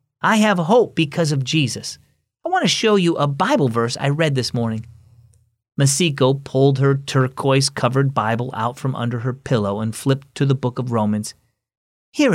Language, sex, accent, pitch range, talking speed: English, male, American, 125-180 Hz, 175 wpm